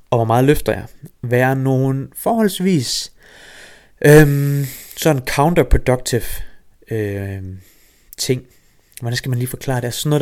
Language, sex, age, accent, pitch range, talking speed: Danish, male, 30-49, native, 115-150 Hz, 130 wpm